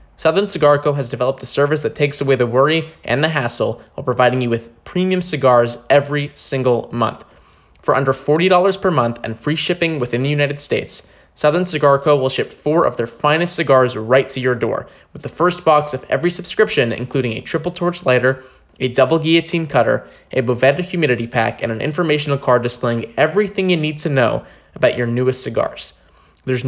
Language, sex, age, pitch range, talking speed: English, male, 20-39, 125-160 Hz, 190 wpm